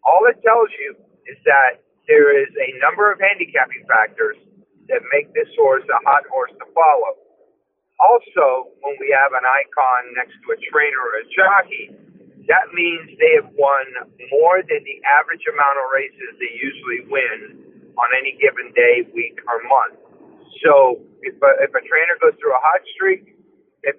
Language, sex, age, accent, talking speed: English, male, 50-69, American, 170 wpm